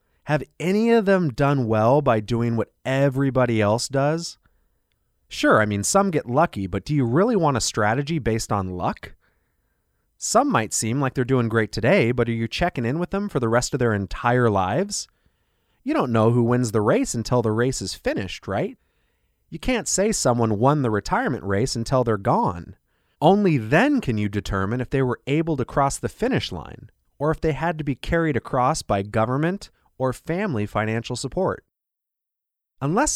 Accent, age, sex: American, 30-49, male